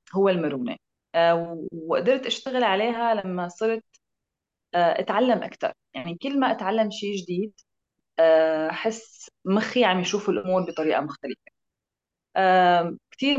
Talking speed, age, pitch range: 110 wpm, 20-39, 165-220 Hz